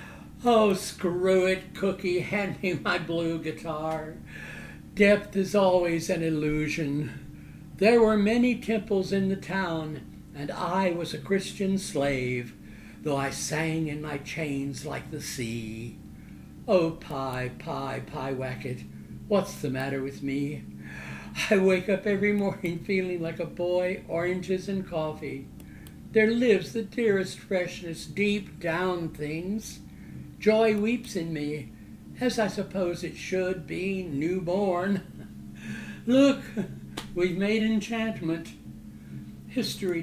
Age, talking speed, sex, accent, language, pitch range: 60-79, 120 wpm, male, American, English, 145-195 Hz